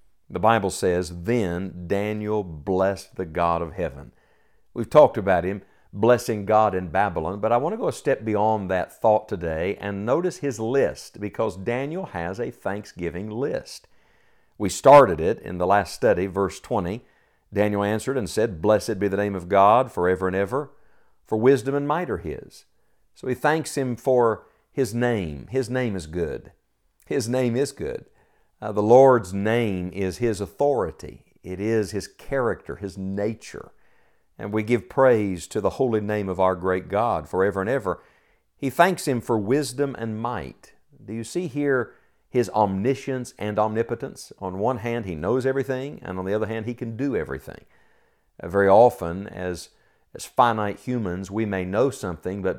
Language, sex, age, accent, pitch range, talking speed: English, male, 50-69, American, 95-125 Hz, 175 wpm